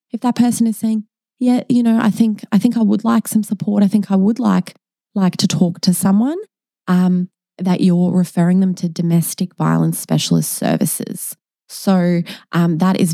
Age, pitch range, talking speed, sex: 20-39, 170-225 Hz, 185 wpm, female